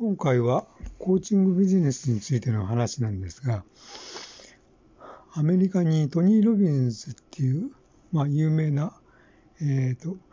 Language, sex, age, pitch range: Japanese, male, 60-79, 125-155 Hz